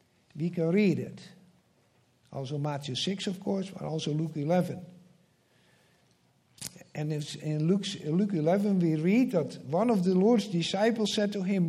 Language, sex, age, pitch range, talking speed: English, male, 60-79, 165-215 Hz, 150 wpm